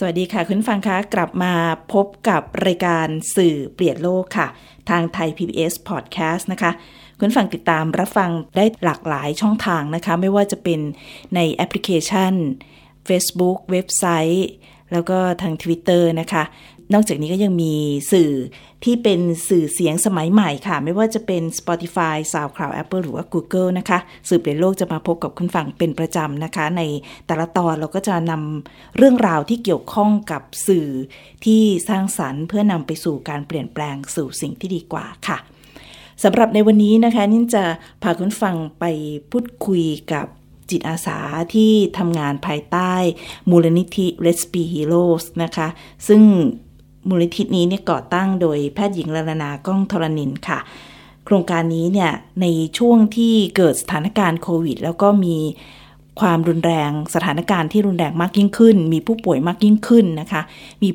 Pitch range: 160-195 Hz